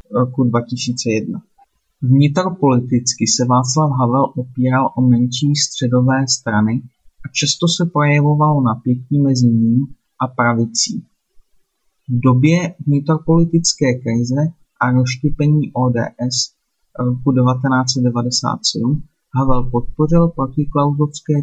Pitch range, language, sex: 120-145 Hz, Czech, male